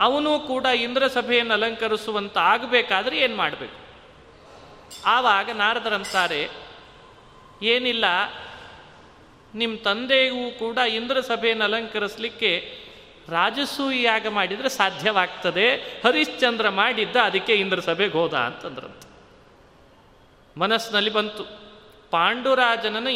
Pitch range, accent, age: 200-250 Hz, native, 30-49